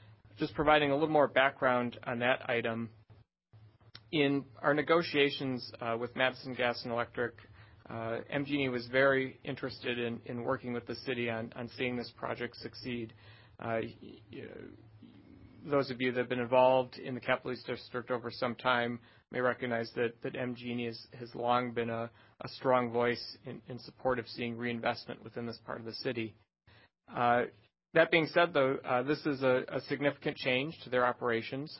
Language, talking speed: English, 175 wpm